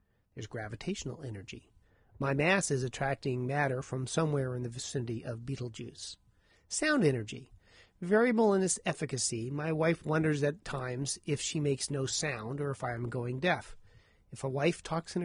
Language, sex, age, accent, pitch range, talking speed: English, male, 40-59, American, 120-160 Hz, 165 wpm